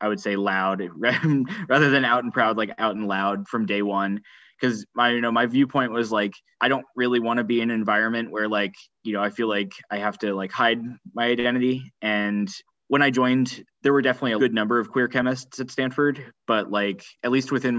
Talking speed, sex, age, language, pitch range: 220 wpm, male, 10-29, English, 105-125 Hz